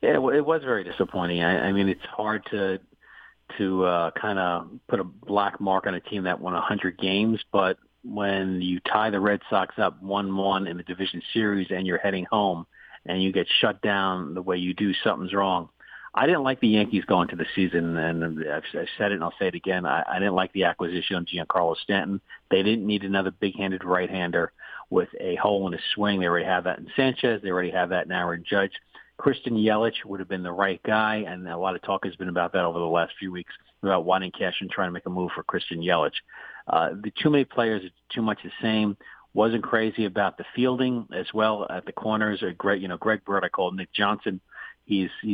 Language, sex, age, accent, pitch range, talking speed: English, male, 40-59, American, 90-105 Hz, 230 wpm